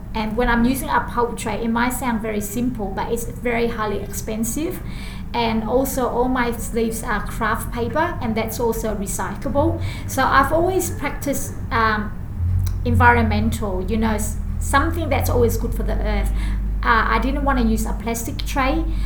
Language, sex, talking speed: English, female, 165 wpm